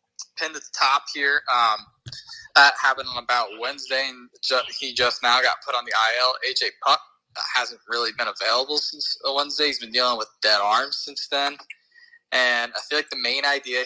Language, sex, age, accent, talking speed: English, male, 20-39, American, 195 wpm